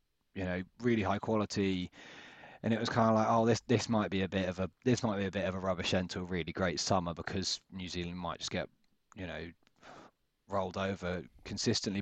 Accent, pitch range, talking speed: British, 95-120 Hz, 225 wpm